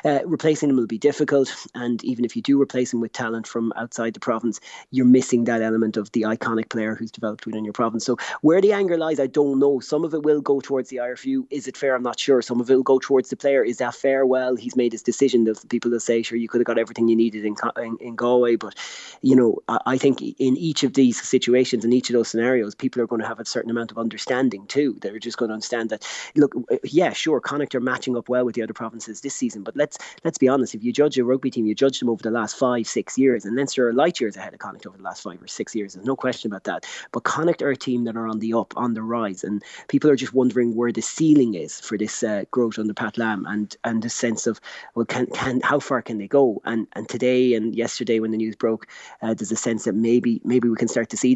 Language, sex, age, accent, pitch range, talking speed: English, male, 30-49, Irish, 115-130 Hz, 275 wpm